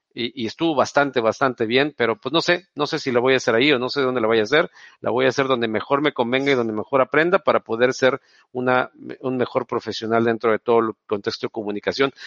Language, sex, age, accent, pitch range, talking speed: Spanish, male, 50-69, Mexican, 120-155 Hz, 260 wpm